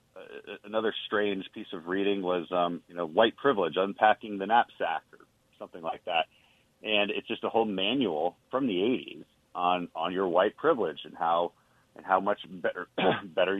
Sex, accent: male, American